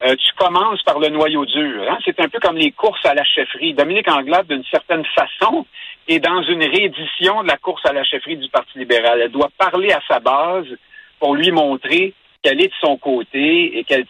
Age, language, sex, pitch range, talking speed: 50-69, French, male, 135-225 Hz, 215 wpm